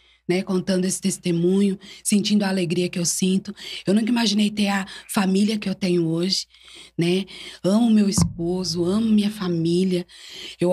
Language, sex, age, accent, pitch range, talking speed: Portuguese, female, 20-39, Brazilian, 185-230 Hz, 155 wpm